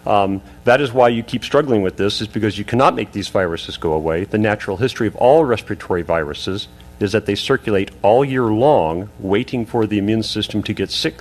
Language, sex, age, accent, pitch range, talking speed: English, male, 40-59, American, 95-115 Hz, 215 wpm